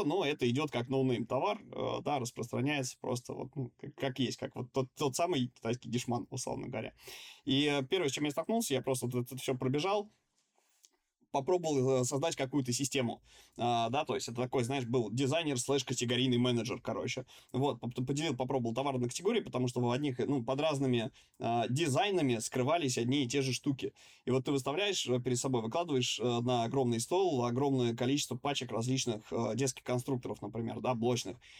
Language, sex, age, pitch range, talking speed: Russian, male, 20-39, 125-140 Hz, 175 wpm